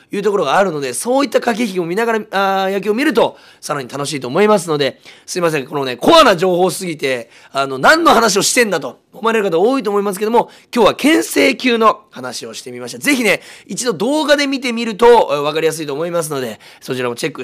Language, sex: Japanese, male